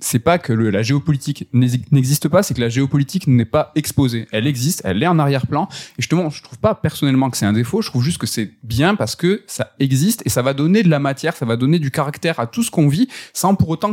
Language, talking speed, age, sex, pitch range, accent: French, 265 wpm, 20-39, male, 115-155 Hz, French